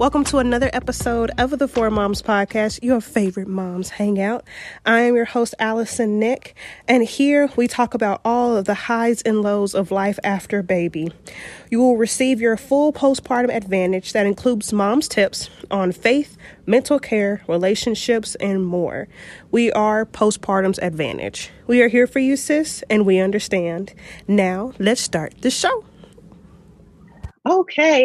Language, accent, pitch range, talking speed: English, American, 195-245 Hz, 150 wpm